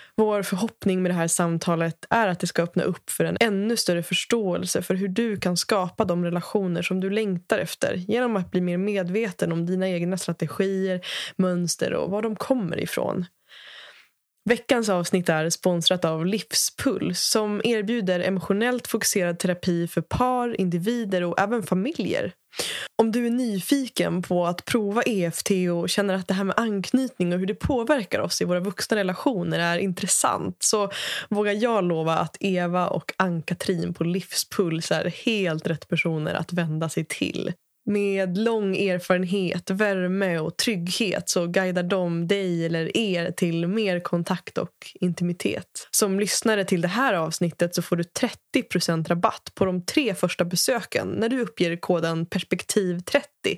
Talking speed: 160 wpm